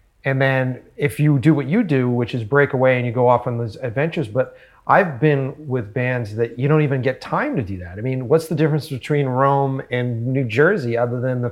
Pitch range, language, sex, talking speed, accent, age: 115-135 Hz, English, male, 240 wpm, American, 30-49